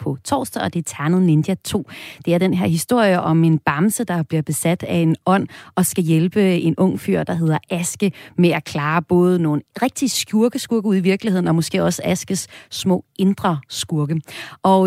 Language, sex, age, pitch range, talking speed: Danish, female, 30-49, 160-205 Hz, 200 wpm